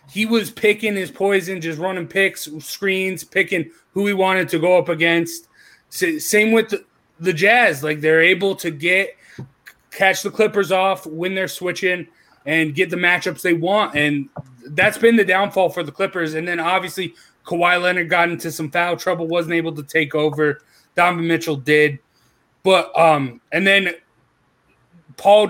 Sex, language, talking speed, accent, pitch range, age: male, English, 165 wpm, American, 160-195 Hz, 30-49